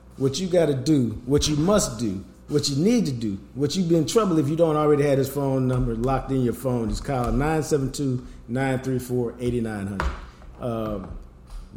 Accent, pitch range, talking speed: American, 120-150 Hz, 175 wpm